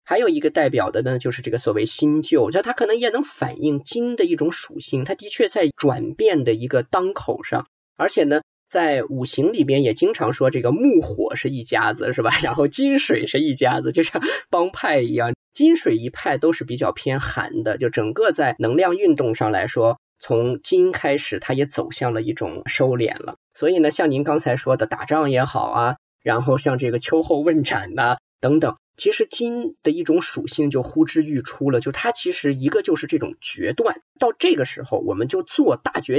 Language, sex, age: Chinese, male, 10-29